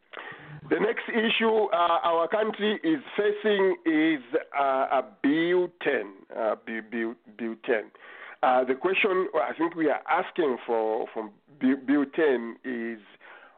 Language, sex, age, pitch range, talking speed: English, male, 50-69, 130-215 Hz, 140 wpm